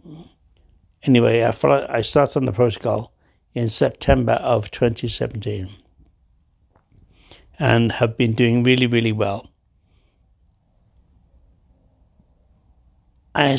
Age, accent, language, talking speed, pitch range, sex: 60-79, British, English, 90 wpm, 90-120 Hz, male